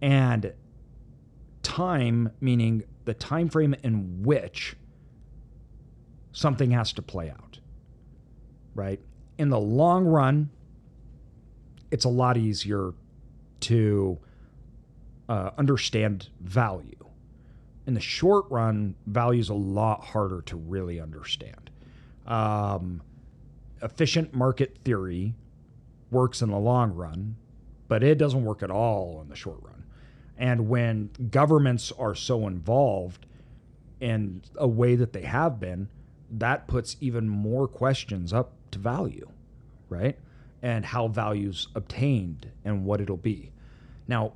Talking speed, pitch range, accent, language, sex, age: 120 wpm, 105-130 Hz, American, English, male, 40-59